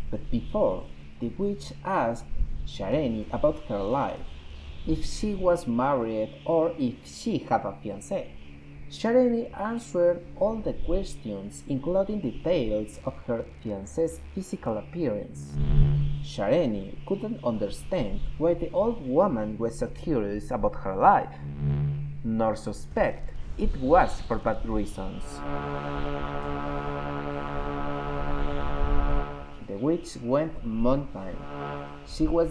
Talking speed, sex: 105 wpm, male